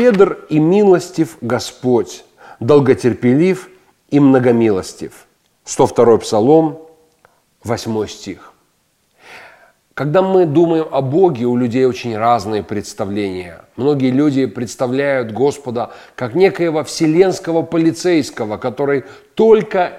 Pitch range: 130-175 Hz